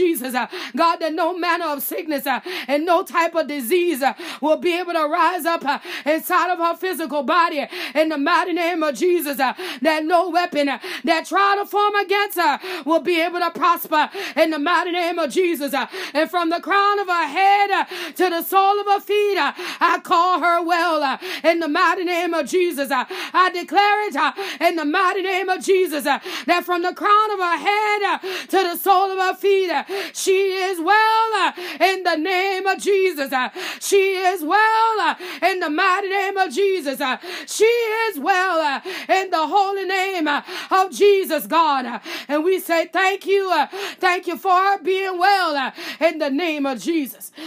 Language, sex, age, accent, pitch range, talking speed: English, female, 30-49, American, 320-380 Hz, 185 wpm